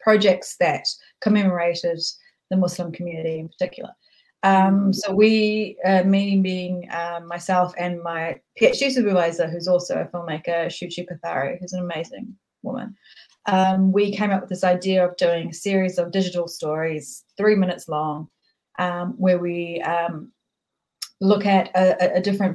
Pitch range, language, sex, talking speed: 175-195 Hz, English, female, 150 wpm